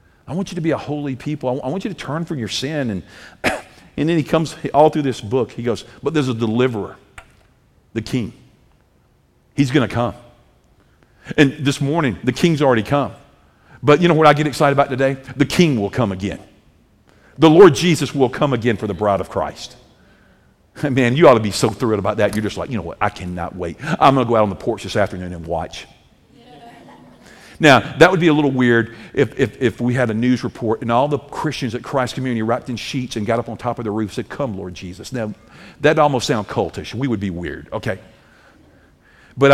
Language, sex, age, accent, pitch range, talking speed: English, male, 50-69, American, 110-145 Hz, 230 wpm